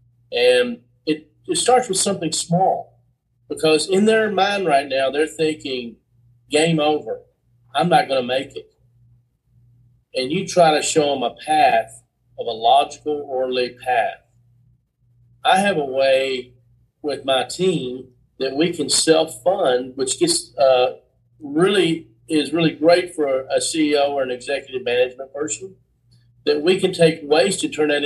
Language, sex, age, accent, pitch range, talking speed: English, male, 40-59, American, 125-160 Hz, 150 wpm